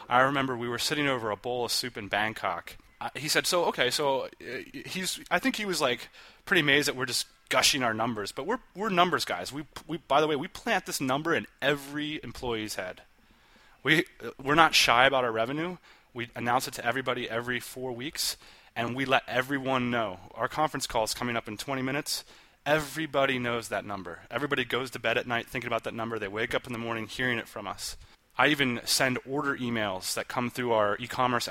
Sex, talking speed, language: male, 215 wpm, English